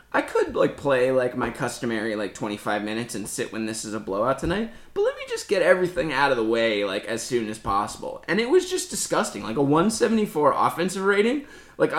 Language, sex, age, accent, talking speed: English, male, 20-39, American, 220 wpm